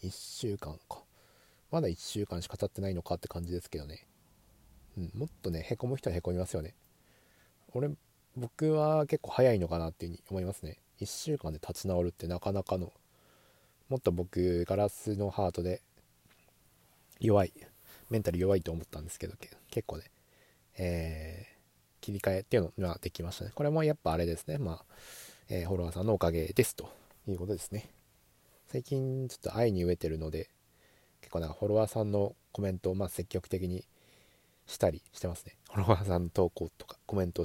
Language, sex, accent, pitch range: Japanese, male, native, 85-110 Hz